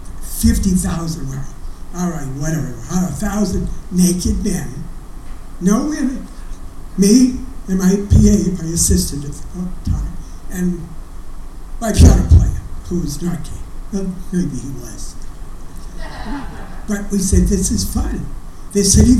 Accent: American